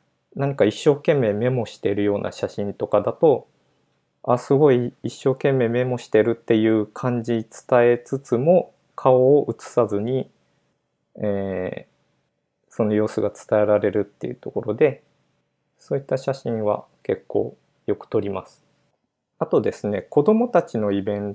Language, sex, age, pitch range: Japanese, male, 20-39, 105-140 Hz